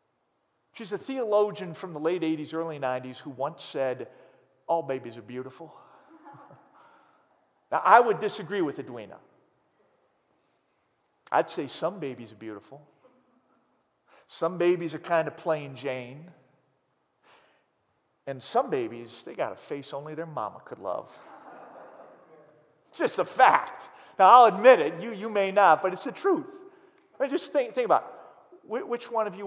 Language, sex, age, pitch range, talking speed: English, male, 40-59, 145-220 Hz, 150 wpm